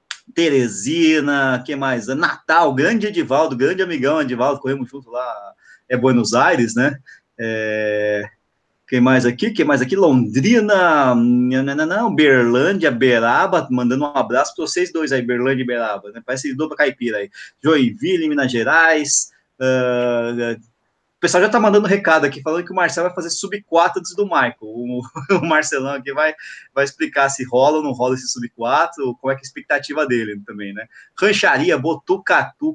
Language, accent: Portuguese, Brazilian